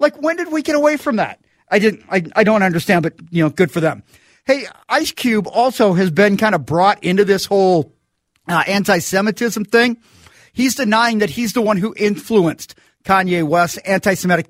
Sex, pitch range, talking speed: male, 180-215 Hz, 190 wpm